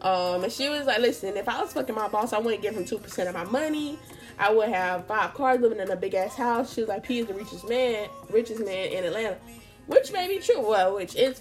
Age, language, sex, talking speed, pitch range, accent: 10-29, English, female, 260 wpm, 185-245 Hz, American